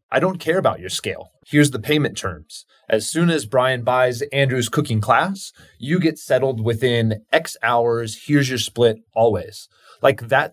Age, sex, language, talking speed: 20-39, male, English, 170 wpm